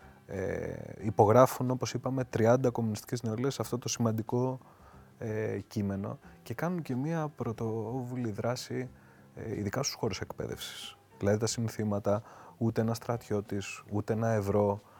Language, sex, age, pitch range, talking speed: Greek, male, 20-39, 95-120 Hz, 130 wpm